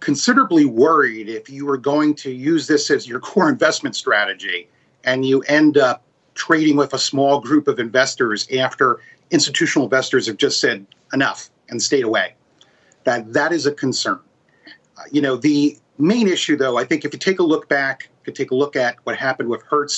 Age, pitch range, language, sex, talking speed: 40-59, 130-190 Hz, English, male, 190 wpm